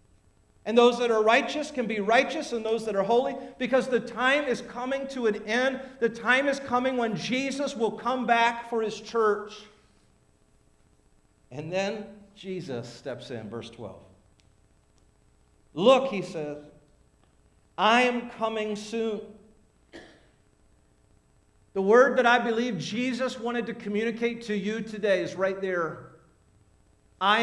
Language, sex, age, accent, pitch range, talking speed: English, male, 50-69, American, 200-240 Hz, 140 wpm